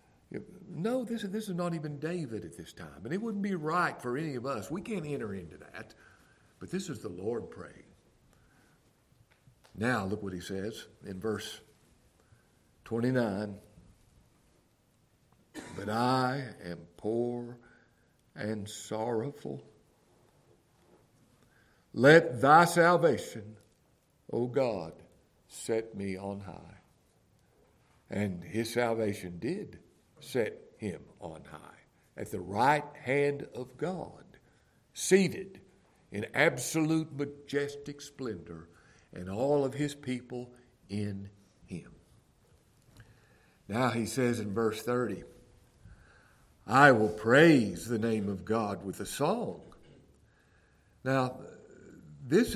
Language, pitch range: English, 105-145 Hz